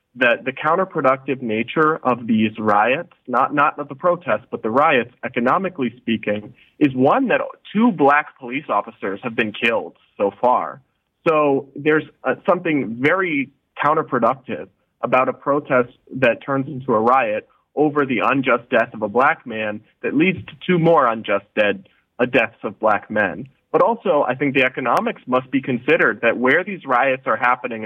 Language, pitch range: English, 120-145 Hz